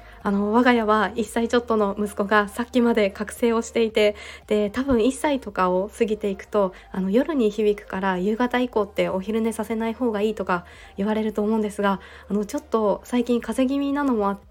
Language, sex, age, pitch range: Japanese, female, 20-39, 205-245 Hz